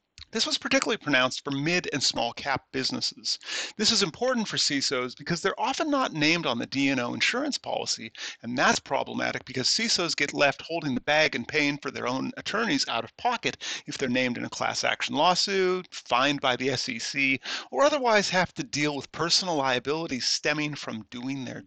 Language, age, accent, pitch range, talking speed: English, 40-59, American, 145-215 Hz, 190 wpm